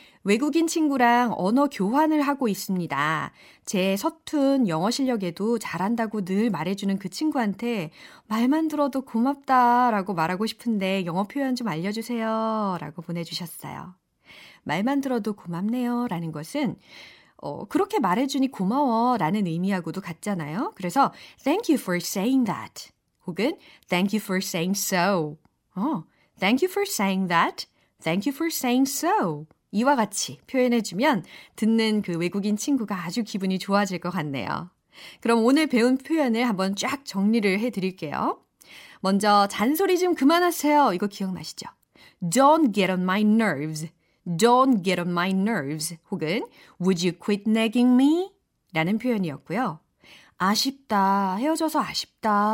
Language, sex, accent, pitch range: Korean, female, native, 185-260 Hz